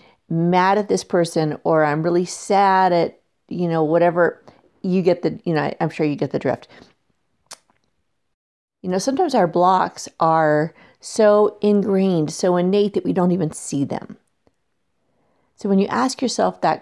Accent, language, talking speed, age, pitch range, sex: American, English, 160 wpm, 40-59, 160-205 Hz, female